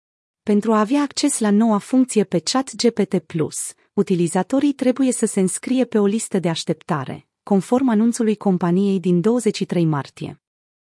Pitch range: 180-230 Hz